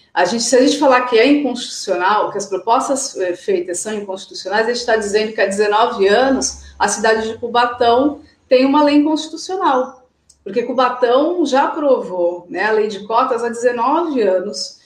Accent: Brazilian